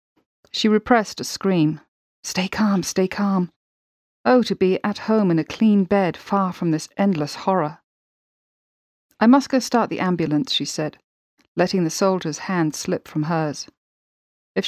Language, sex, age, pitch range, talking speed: English, female, 40-59, 160-215 Hz, 155 wpm